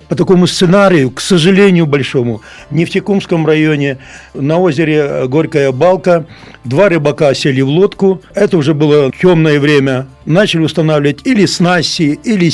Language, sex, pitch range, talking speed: Russian, male, 145-180 Hz, 135 wpm